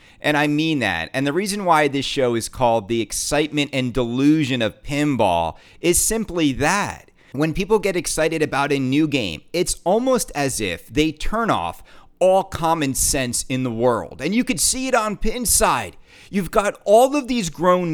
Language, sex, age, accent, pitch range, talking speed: English, male, 30-49, American, 145-220 Hz, 185 wpm